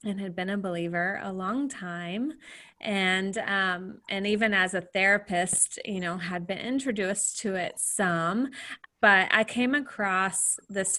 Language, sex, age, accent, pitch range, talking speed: English, female, 20-39, American, 180-215 Hz, 155 wpm